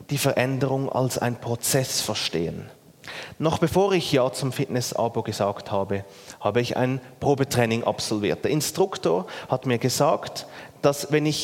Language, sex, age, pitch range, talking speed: German, male, 30-49, 125-180 Hz, 140 wpm